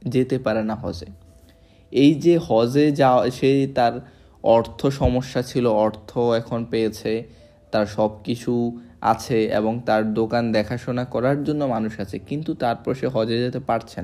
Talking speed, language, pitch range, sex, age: 75 wpm, Bengali, 95-135 Hz, male, 20-39